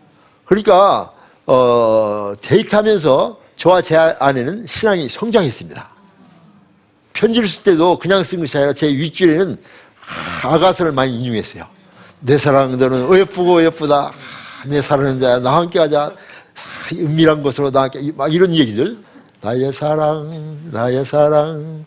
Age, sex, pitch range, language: 60-79, male, 125-175 Hz, Korean